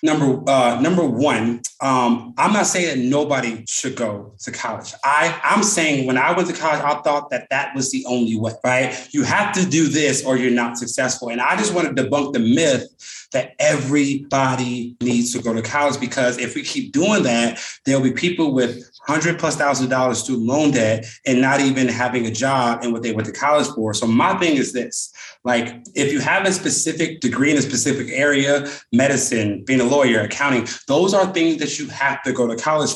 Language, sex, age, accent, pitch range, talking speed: English, male, 30-49, American, 125-155 Hz, 210 wpm